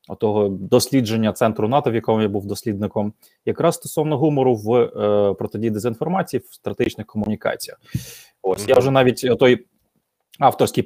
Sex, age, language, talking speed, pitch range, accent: male, 20-39, Ukrainian, 140 wpm, 110-130 Hz, native